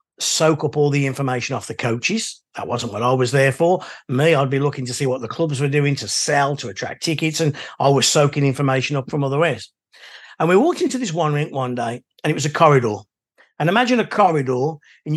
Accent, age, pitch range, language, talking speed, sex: British, 50-69, 135-185 Hz, English, 235 wpm, male